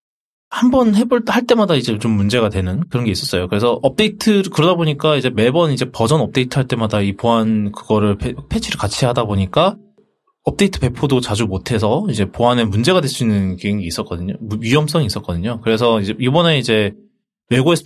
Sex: male